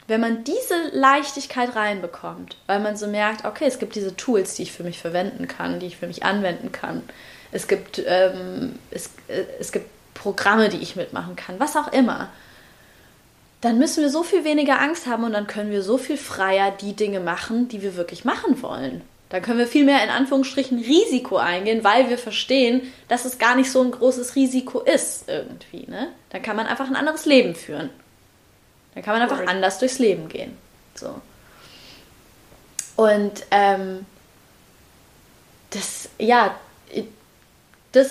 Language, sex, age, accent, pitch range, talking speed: German, female, 20-39, German, 195-260 Hz, 165 wpm